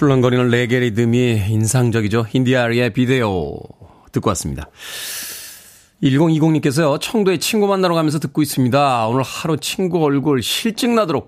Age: 40-59